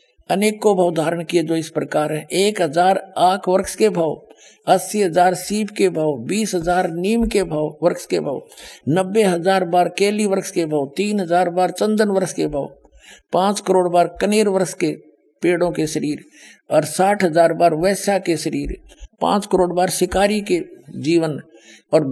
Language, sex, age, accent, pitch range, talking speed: Hindi, male, 60-79, native, 155-195 Hz, 175 wpm